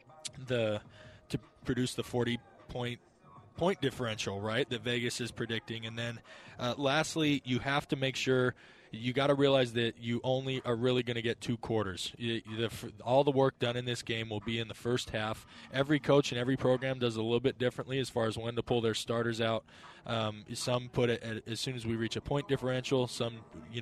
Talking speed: 215 wpm